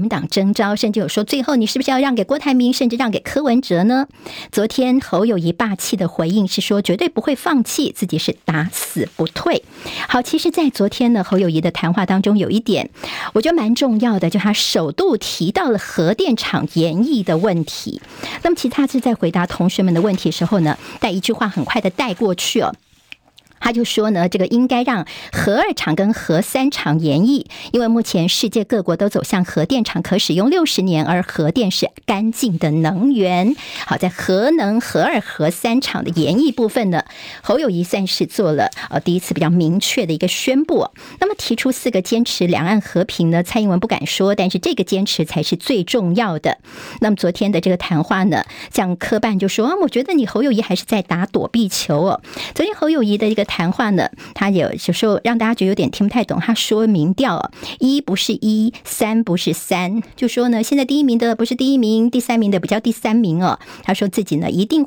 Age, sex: 50-69, male